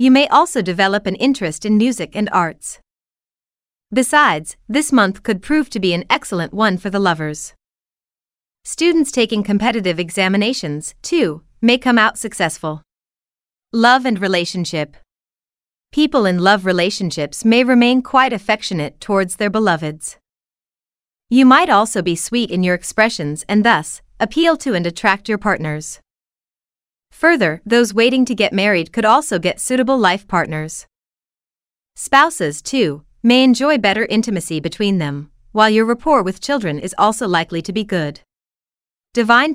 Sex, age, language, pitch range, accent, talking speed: female, 30-49, English, 175-235 Hz, American, 145 wpm